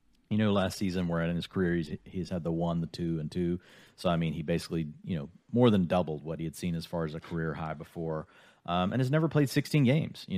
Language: English